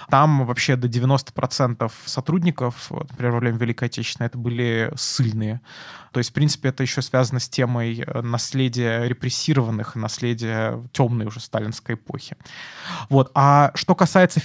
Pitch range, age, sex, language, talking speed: 125-145 Hz, 20-39, male, Russian, 130 wpm